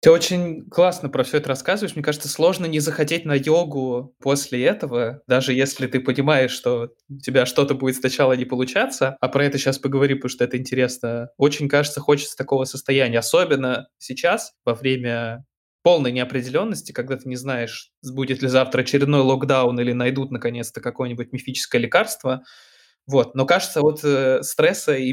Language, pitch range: Russian, 130-145 Hz